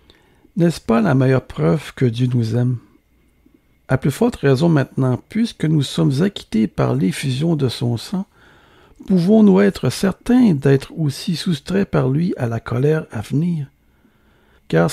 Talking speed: 150 wpm